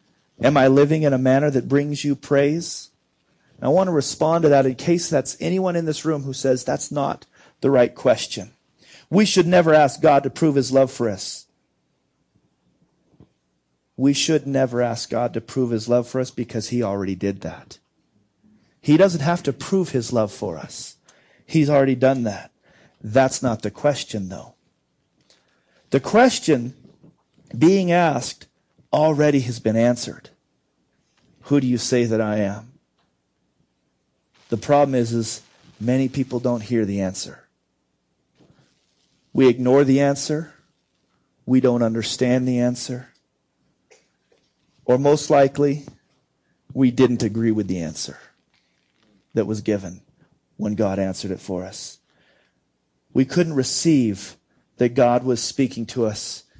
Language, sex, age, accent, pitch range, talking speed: English, male, 40-59, American, 110-145 Hz, 145 wpm